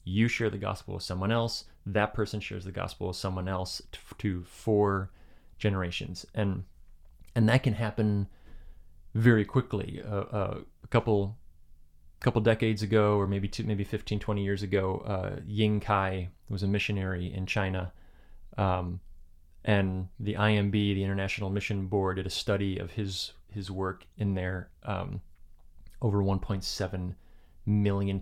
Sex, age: male, 30-49